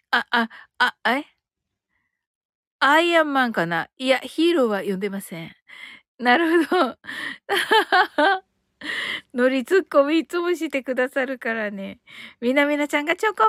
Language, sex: Japanese, female